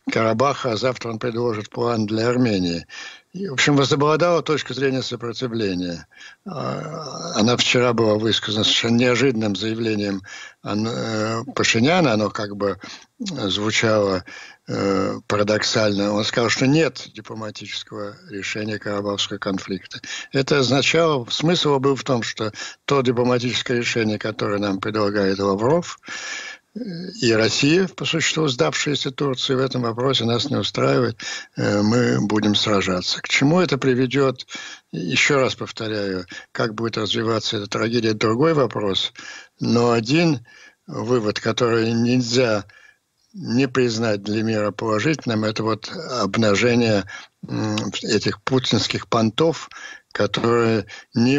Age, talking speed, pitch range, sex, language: 60-79, 110 wpm, 105-130 Hz, male, Ukrainian